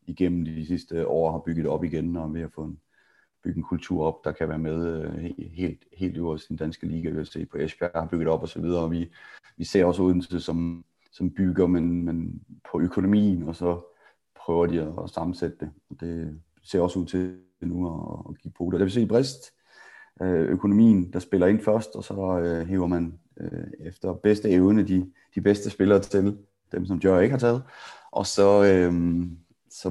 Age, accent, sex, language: 30-49, native, male, Danish